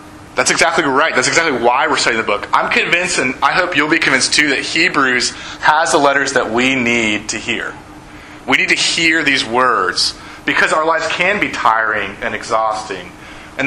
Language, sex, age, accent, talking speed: English, male, 30-49, American, 195 wpm